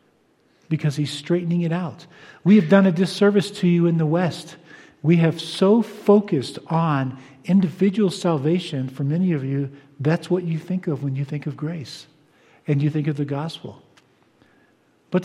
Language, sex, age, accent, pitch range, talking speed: English, male, 50-69, American, 150-185 Hz, 170 wpm